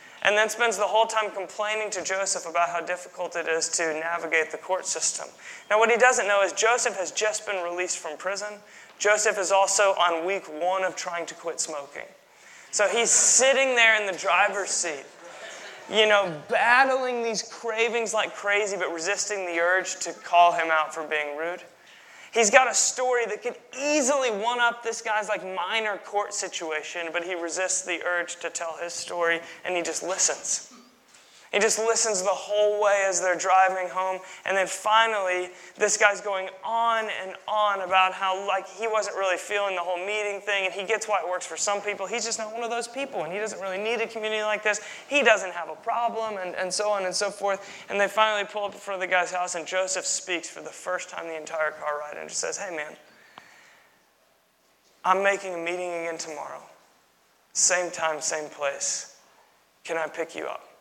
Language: English